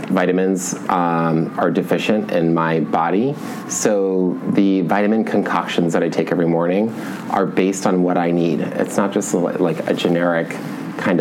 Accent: American